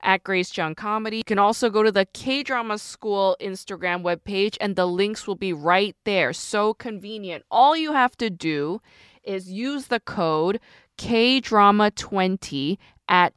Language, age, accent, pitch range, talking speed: English, 20-39, American, 180-225 Hz, 155 wpm